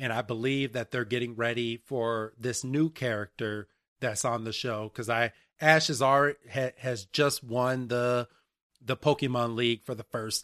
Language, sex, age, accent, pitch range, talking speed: English, male, 30-49, American, 120-150 Hz, 165 wpm